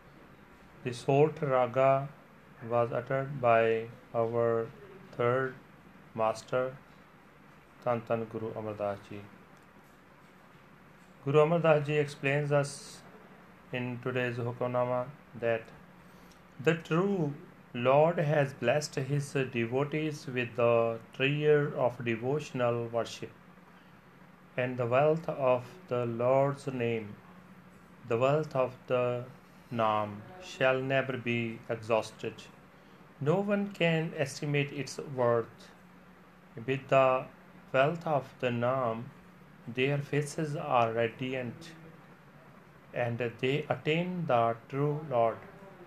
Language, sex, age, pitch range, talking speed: Punjabi, male, 40-59, 125-165 Hz, 100 wpm